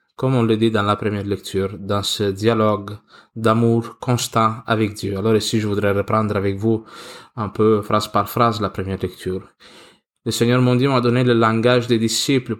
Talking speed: 185 wpm